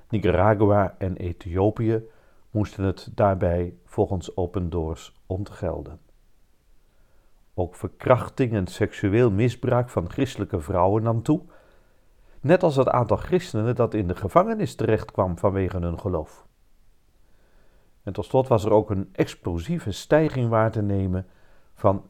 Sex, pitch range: male, 90-110 Hz